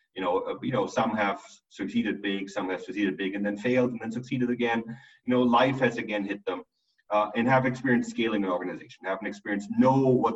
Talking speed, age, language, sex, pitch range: 220 wpm, 30-49, English, male, 100-125 Hz